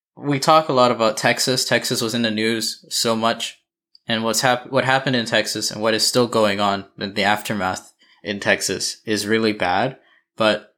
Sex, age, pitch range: male, 20-39, 110-130 Hz